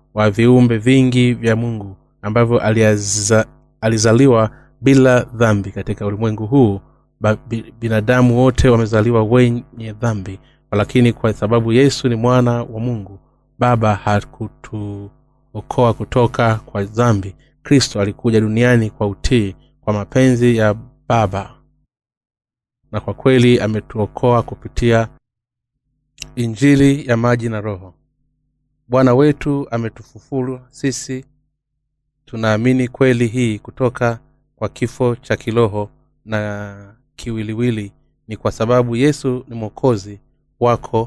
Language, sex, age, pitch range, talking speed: Swahili, male, 30-49, 110-130 Hz, 100 wpm